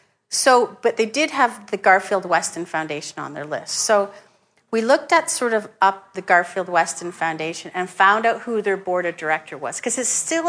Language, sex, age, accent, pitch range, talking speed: English, female, 50-69, American, 170-215 Hz, 200 wpm